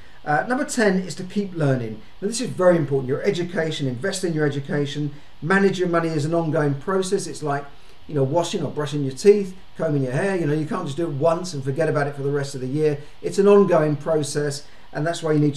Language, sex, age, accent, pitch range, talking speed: English, male, 50-69, British, 145-190 Hz, 245 wpm